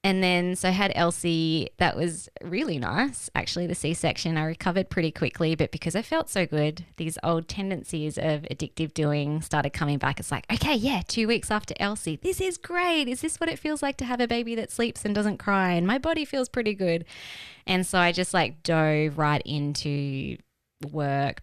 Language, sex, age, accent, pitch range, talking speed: English, female, 20-39, Australian, 145-180 Hz, 205 wpm